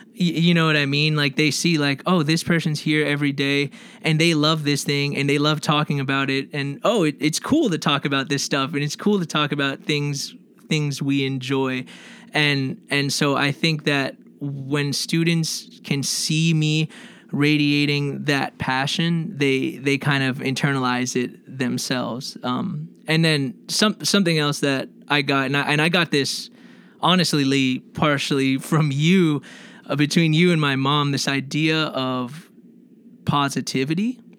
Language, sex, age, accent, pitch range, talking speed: English, male, 20-39, American, 135-165 Hz, 170 wpm